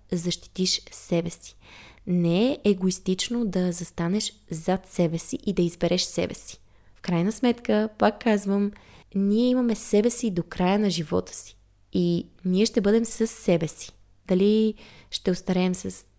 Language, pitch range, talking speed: Bulgarian, 175-225 Hz, 150 wpm